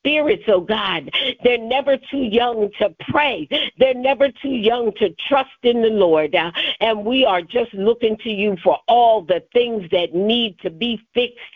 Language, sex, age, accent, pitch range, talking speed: English, female, 50-69, American, 185-235 Hz, 175 wpm